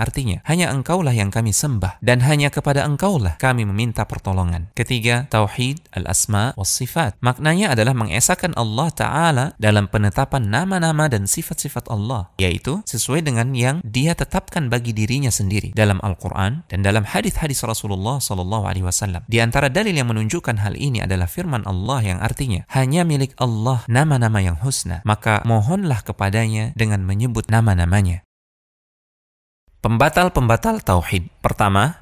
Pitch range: 100-135 Hz